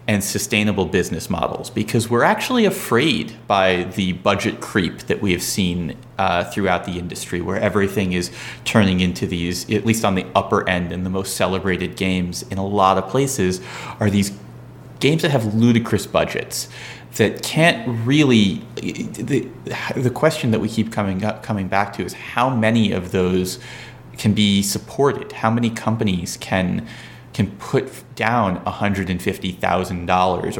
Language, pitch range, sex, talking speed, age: English, 95-115 Hz, male, 155 wpm, 30-49